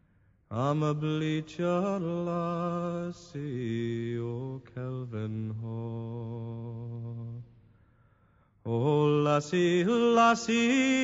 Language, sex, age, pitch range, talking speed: English, male, 40-59, 125-195 Hz, 55 wpm